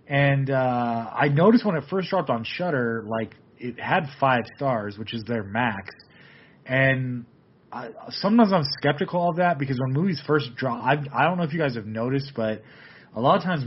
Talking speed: 200 wpm